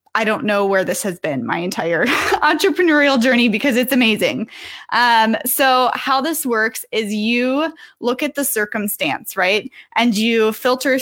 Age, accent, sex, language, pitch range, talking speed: 10-29, American, female, English, 205-260 Hz, 160 wpm